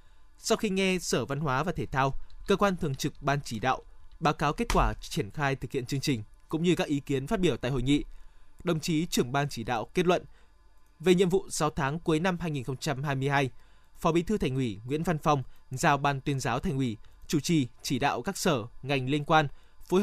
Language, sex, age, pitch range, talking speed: Vietnamese, male, 20-39, 130-170 Hz, 230 wpm